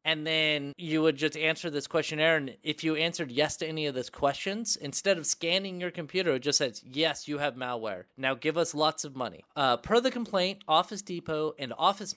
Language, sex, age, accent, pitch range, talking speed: English, male, 30-49, American, 145-185 Hz, 215 wpm